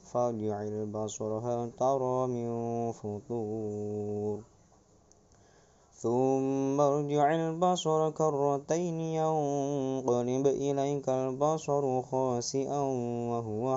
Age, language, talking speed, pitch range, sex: 20-39, Indonesian, 70 wpm, 115-140 Hz, male